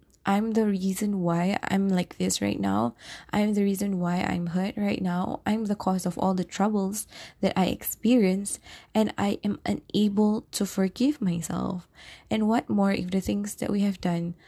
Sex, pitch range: female, 180-215 Hz